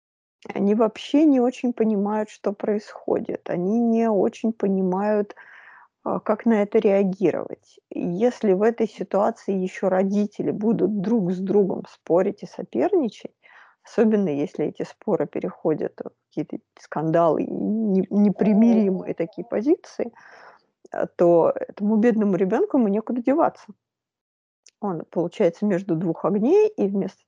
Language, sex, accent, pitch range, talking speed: Russian, female, native, 190-245 Hz, 115 wpm